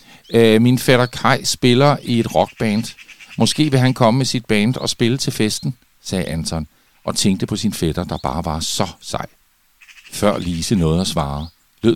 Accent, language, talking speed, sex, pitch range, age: native, Danish, 180 wpm, male, 90-130 Hz, 60-79